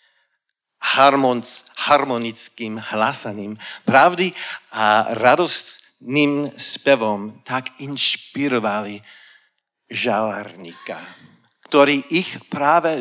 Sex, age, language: male, 50-69, Slovak